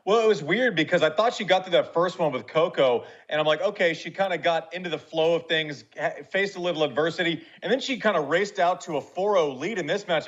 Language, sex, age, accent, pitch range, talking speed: English, male, 30-49, American, 150-180 Hz, 270 wpm